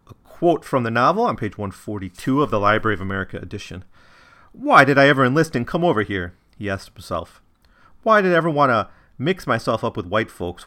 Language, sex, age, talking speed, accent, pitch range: English, male, 40-59, 210 wpm, American, 90-125 Hz